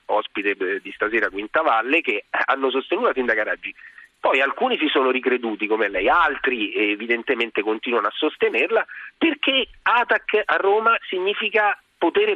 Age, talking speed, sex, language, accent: 40-59, 140 wpm, male, Italian, native